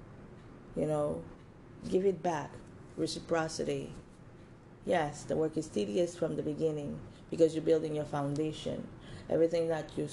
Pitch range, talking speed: 150-165 Hz, 130 wpm